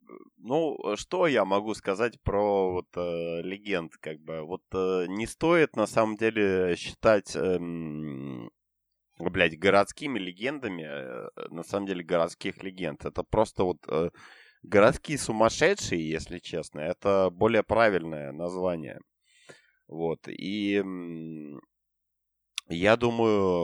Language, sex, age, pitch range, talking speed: Ukrainian, male, 30-49, 85-105 Hz, 115 wpm